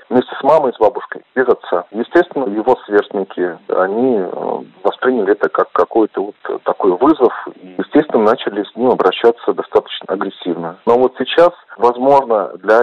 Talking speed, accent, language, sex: 145 wpm, native, Russian, male